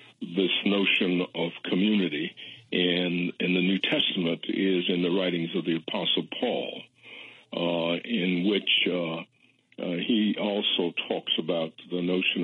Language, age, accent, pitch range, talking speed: English, 60-79, American, 90-105 Hz, 135 wpm